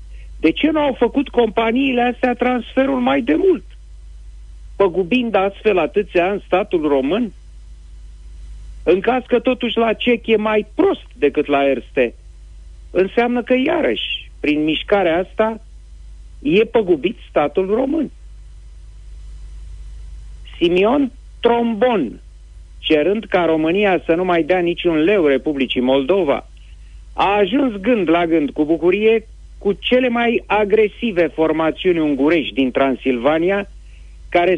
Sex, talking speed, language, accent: male, 115 wpm, Romanian, native